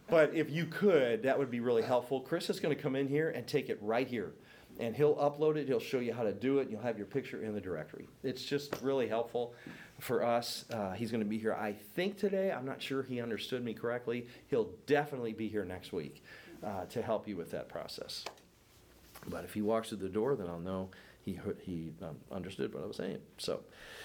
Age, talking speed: 40-59, 235 wpm